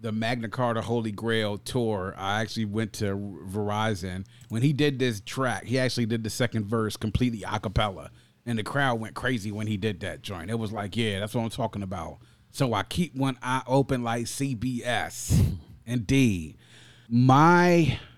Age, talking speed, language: 30-49, 180 wpm, English